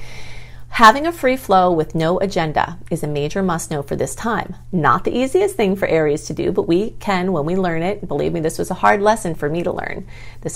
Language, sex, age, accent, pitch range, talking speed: English, female, 40-59, American, 160-205 Hz, 240 wpm